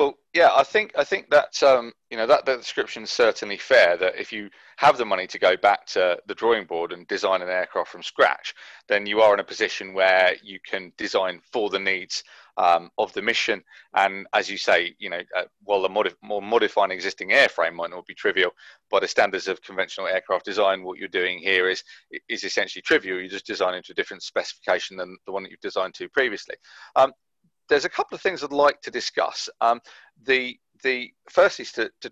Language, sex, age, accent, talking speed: English, male, 30-49, British, 220 wpm